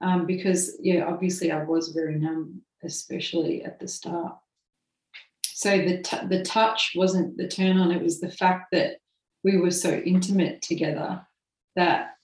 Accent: Australian